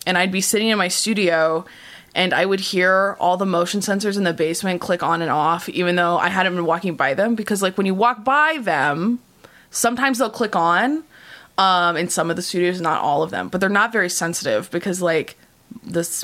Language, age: English, 20-39